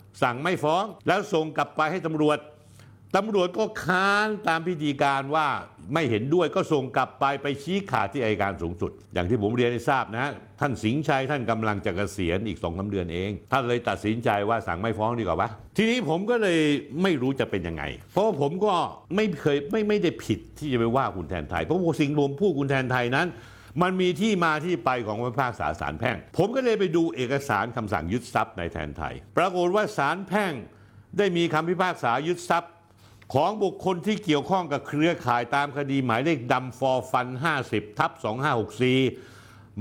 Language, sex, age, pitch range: Thai, male, 60-79, 110-170 Hz